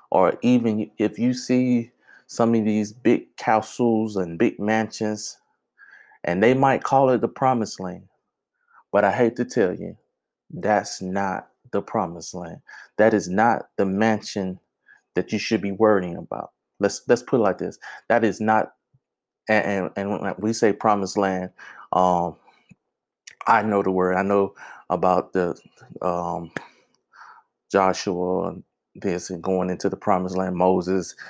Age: 20-39